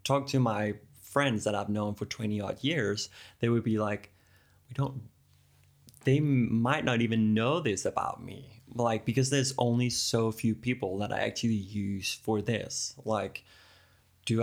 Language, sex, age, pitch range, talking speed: English, male, 20-39, 105-120 Hz, 165 wpm